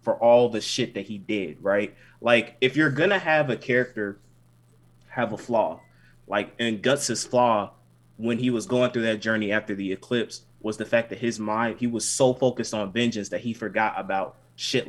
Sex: male